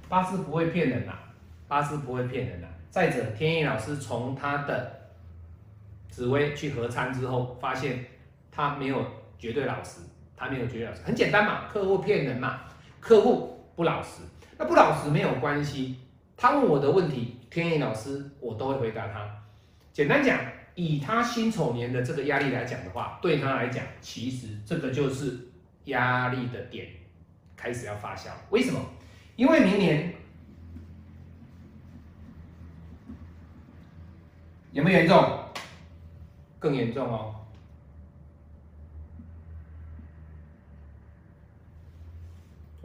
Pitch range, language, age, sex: 85-140 Hz, Chinese, 30-49, male